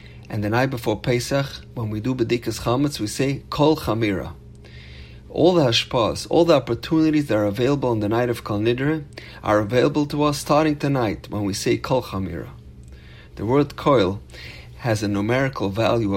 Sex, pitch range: male, 100-135 Hz